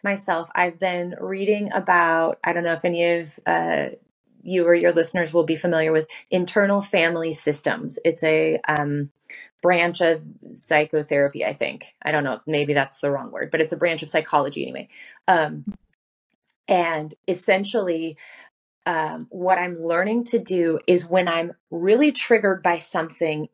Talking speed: 160 wpm